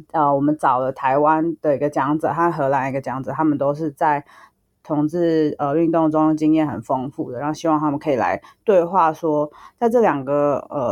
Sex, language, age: female, Chinese, 20-39